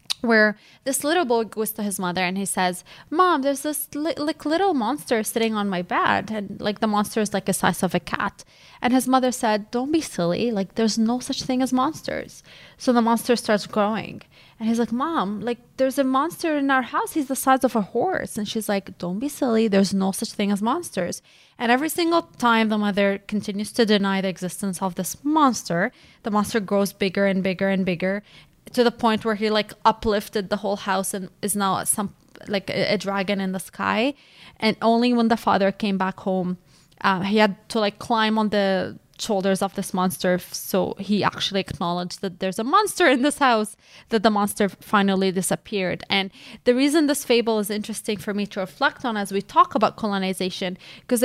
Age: 20-39